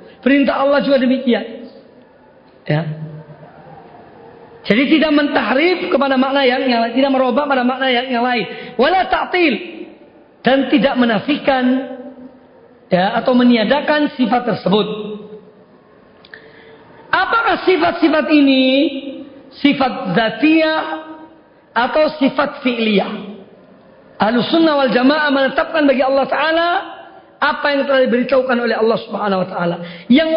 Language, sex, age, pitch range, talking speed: Indonesian, female, 40-59, 245-305 Hz, 105 wpm